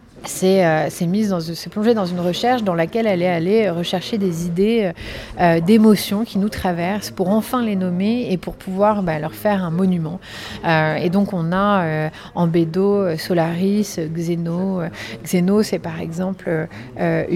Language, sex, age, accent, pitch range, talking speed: French, female, 30-49, French, 175-205 Hz, 165 wpm